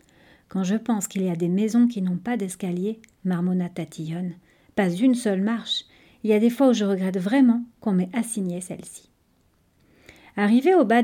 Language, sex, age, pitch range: French, female, 40-59, 190-250 Hz